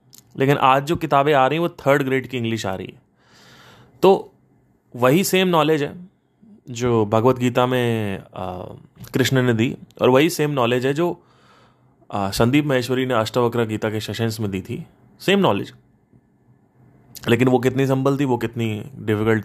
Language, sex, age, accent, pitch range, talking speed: Hindi, male, 30-49, native, 125-175 Hz, 165 wpm